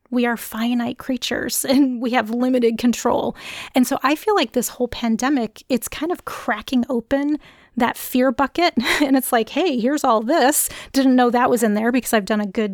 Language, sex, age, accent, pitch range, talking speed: English, female, 30-49, American, 225-260 Hz, 205 wpm